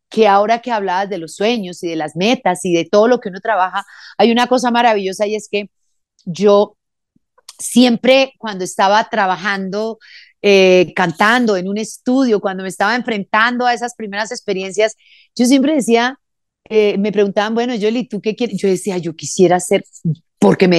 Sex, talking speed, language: female, 175 wpm, Spanish